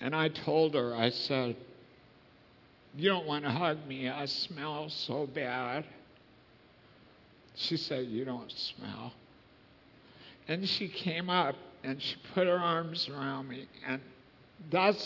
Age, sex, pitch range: 60-79, male, 140-195 Hz